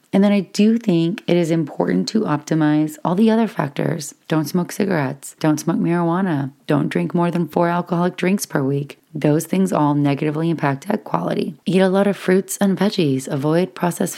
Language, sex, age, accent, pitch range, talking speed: English, female, 30-49, American, 150-185 Hz, 190 wpm